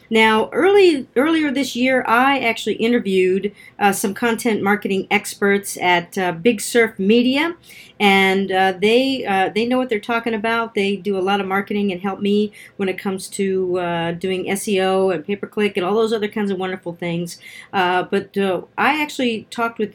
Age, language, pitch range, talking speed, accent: 50-69, English, 180-225 Hz, 185 wpm, American